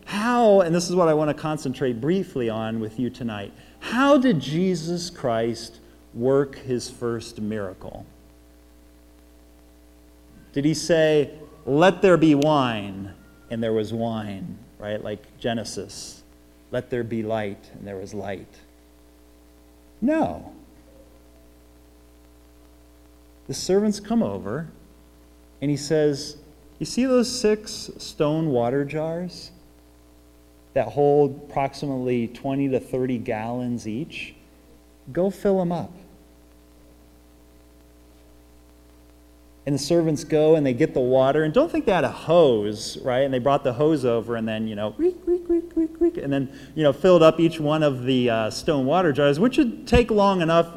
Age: 40-59